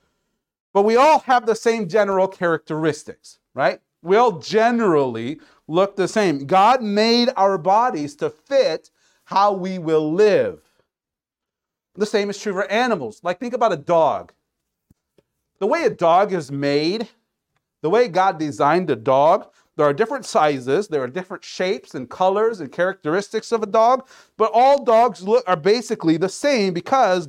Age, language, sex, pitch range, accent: 40-59, Japanese, male, 155-215 Hz, American